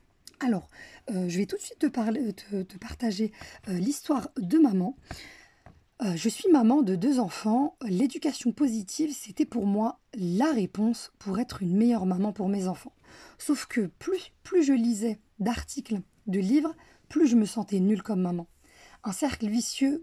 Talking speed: 170 wpm